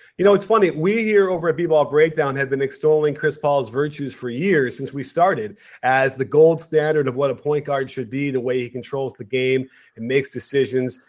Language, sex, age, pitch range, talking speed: English, male, 30-49, 135-190 Hz, 220 wpm